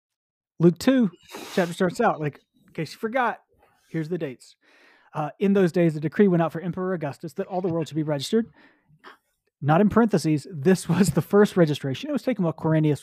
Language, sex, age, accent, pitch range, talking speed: English, male, 30-49, American, 145-190 Hz, 205 wpm